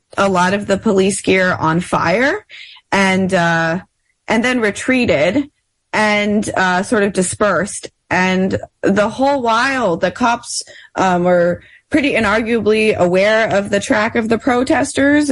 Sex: female